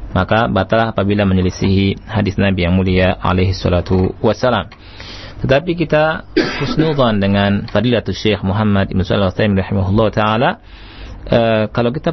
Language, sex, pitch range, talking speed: Indonesian, male, 100-125 Hz, 110 wpm